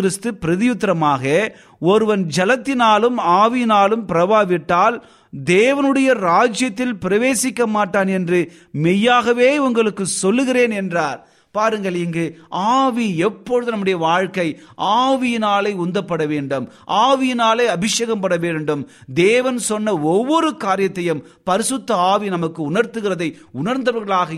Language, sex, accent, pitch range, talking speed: Tamil, male, native, 150-220 Hz, 85 wpm